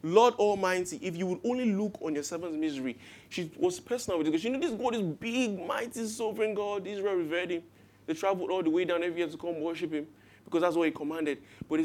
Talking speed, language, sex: 240 wpm, English, male